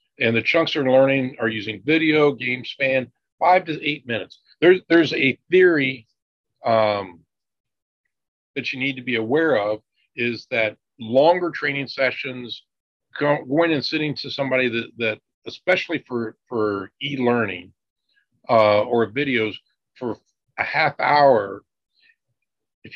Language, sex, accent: English, male, American